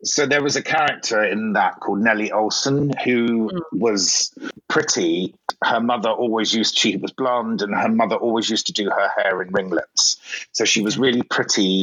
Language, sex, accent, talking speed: English, male, British, 190 wpm